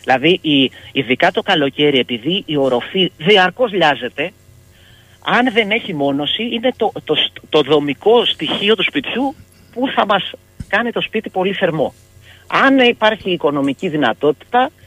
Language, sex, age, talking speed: Greek, male, 40-59, 135 wpm